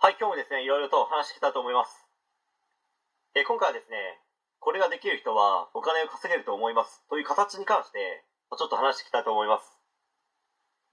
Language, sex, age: Japanese, male, 40-59